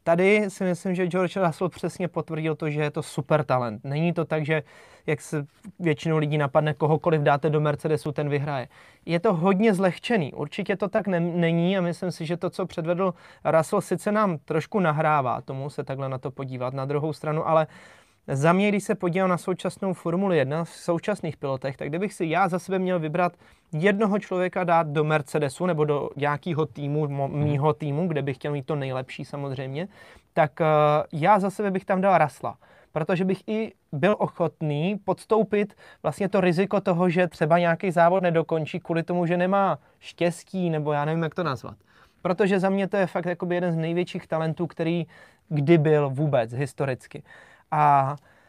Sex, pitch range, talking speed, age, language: male, 155-190 Hz, 185 wpm, 20-39, Czech